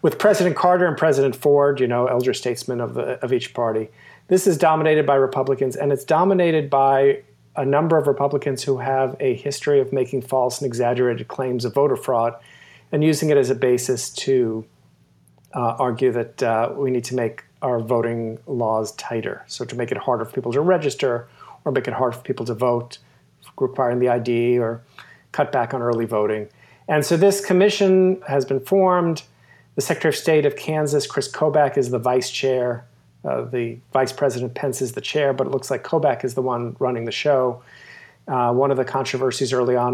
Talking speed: 195 wpm